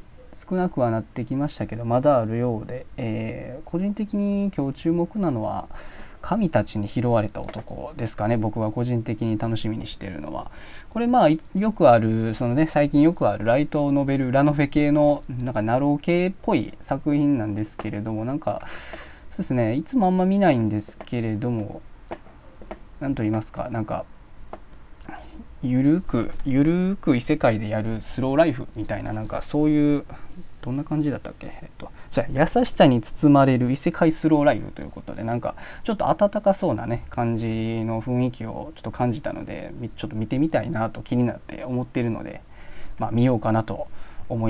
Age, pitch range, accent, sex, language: 20-39, 110-150 Hz, native, male, Japanese